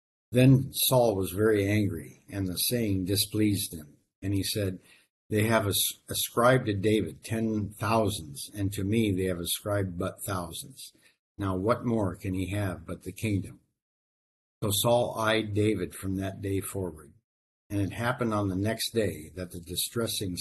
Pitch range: 90-110 Hz